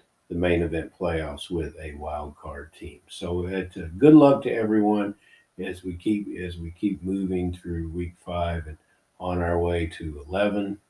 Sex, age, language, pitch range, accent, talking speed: male, 50-69, English, 85-105 Hz, American, 175 wpm